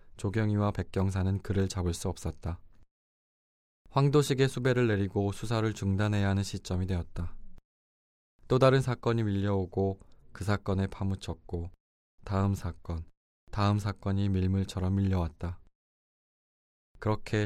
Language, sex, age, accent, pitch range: Korean, male, 20-39, native, 90-110 Hz